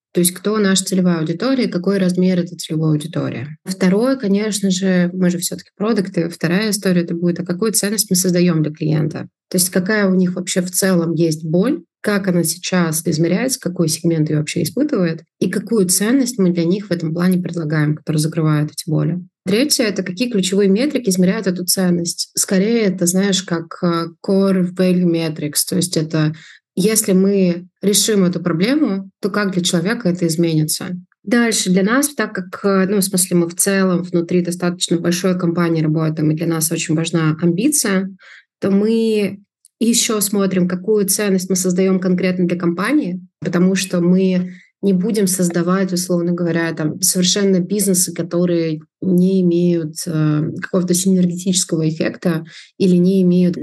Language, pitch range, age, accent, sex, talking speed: Russian, 170-195 Hz, 20-39, native, female, 160 wpm